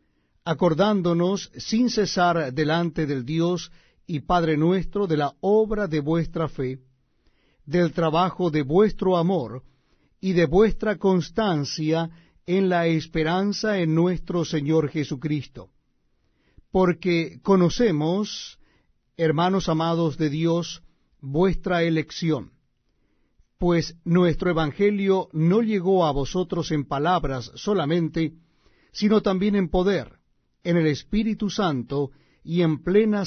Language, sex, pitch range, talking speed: Spanish, male, 155-190 Hz, 110 wpm